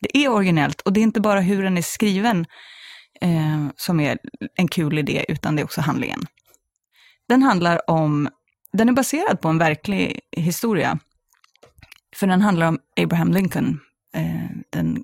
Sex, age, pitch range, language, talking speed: female, 30-49, 155-200 Hz, English, 155 wpm